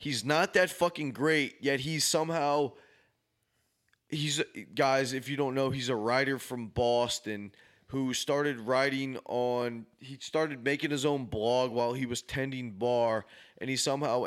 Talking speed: 155 wpm